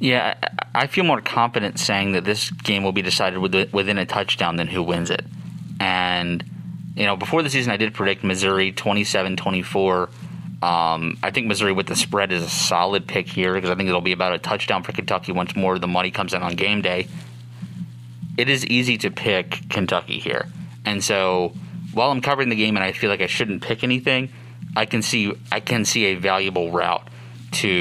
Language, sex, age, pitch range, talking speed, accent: English, male, 30-49, 90-110 Hz, 205 wpm, American